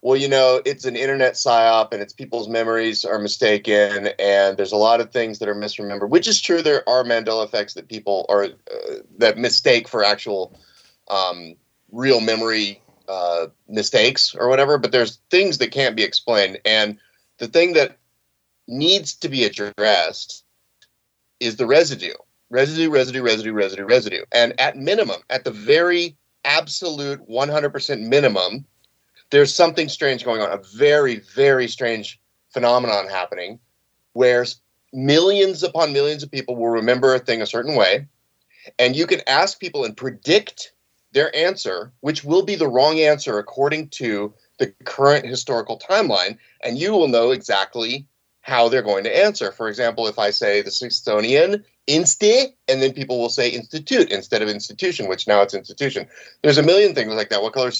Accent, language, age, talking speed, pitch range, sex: American, English, 30-49, 170 wpm, 110-150 Hz, male